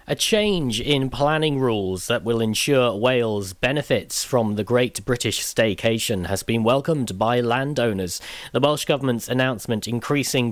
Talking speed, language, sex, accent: 145 wpm, English, male, British